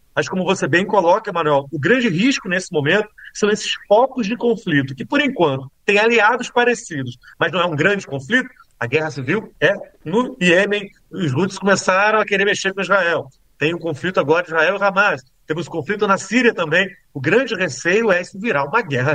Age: 40-59